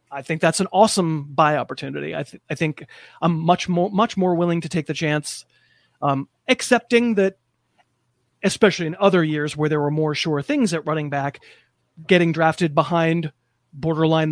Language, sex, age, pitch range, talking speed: English, male, 30-49, 150-185 Hz, 170 wpm